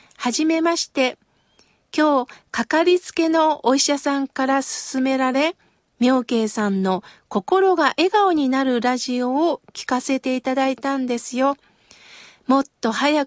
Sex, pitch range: female, 235-305 Hz